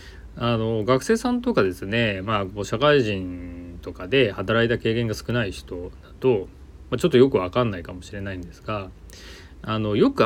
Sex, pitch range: male, 90-135 Hz